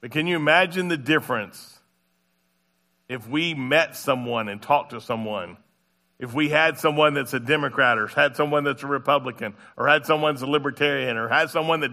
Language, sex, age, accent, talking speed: English, male, 50-69, American, 185 wpm